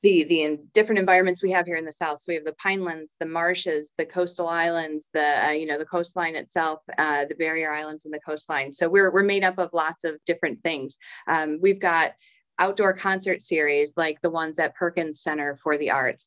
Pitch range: 150-170 Hz